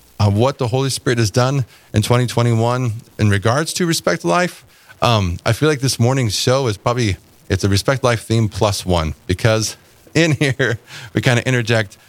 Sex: male